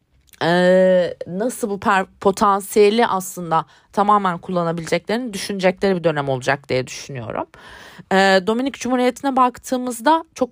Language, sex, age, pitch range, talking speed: Turkish, female, 30-49, 170-230 Hz, 90 wpm